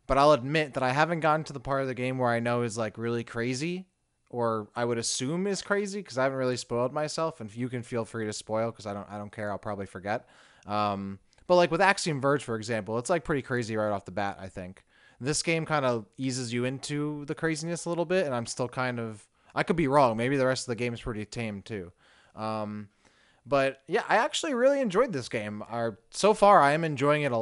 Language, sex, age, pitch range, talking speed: English, male, 20-39, 110-140 Hz, 250 wpm